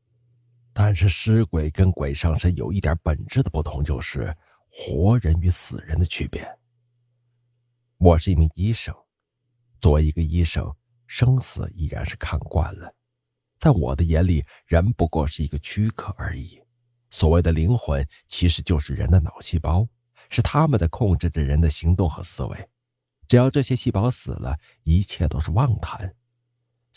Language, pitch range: Chinese, 85-120 Hz